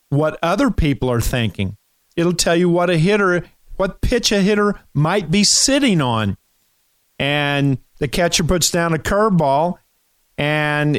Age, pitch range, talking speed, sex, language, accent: 40-59, 125-175 Hz, 145 wpm, male, English, American